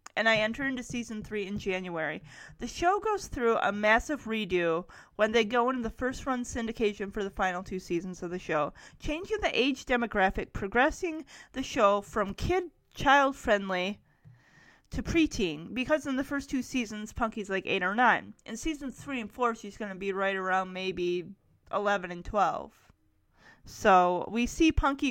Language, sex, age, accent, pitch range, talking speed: English, female, 30-49, American, 195-270 Hz, 175 wpm